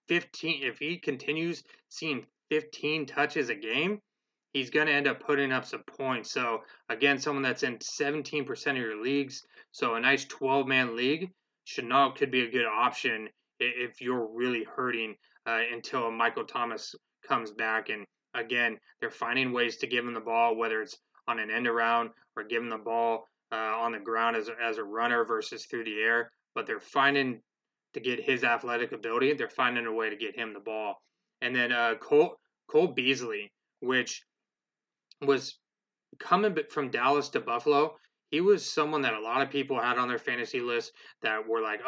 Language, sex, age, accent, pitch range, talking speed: English, male, 20-39, American, 115-145 Hz, 185 wpm